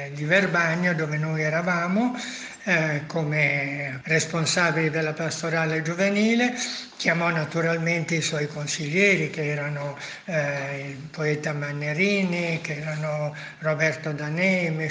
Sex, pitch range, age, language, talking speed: male, 160-185 Hz, 60-79, Italian, 105 wpm